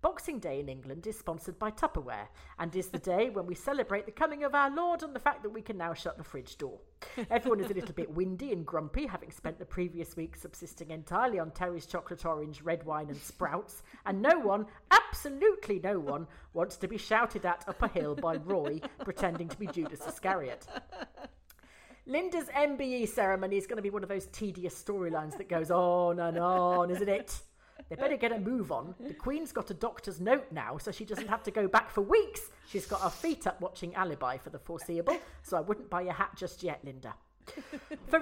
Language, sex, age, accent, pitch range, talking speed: English, female, 40-59, British, 175-235 Hz, 215 wpm